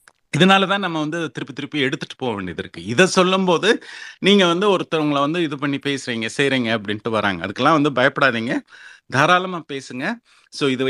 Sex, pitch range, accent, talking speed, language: male, 125-165 Hz, native, 170 wpm, Tamil